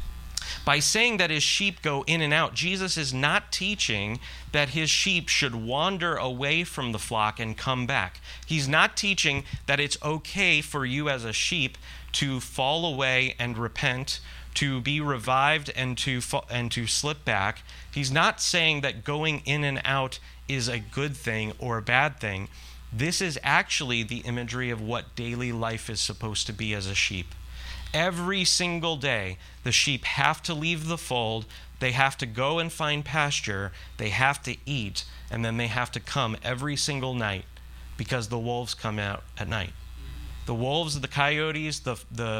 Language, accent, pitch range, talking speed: English, American, 110-145 Hz, 180 wpm